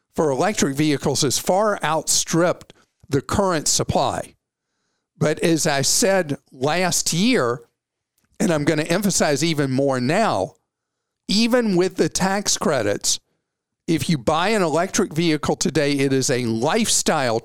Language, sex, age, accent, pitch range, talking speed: English, male, 50-69, American, 140-180 Hz, 135 wpm